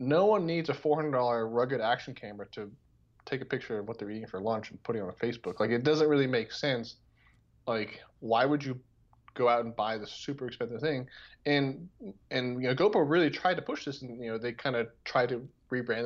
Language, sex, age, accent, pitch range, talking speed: English, male, 20-39, American, 120-145 Hz, 225 wpm